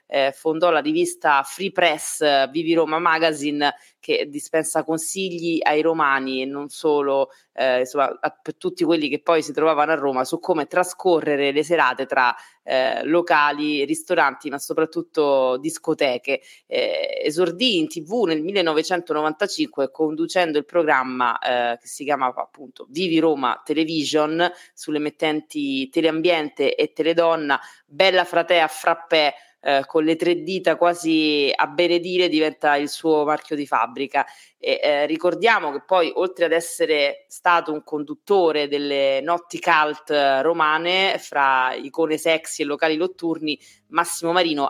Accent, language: native, Italian